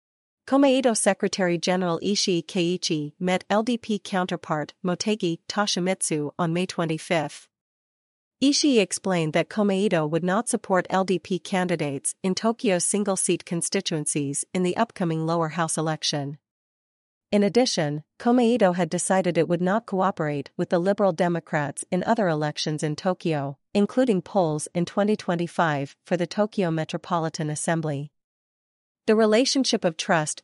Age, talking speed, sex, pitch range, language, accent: 40-59, 125 wpm, female, 160-195 Hz, English, American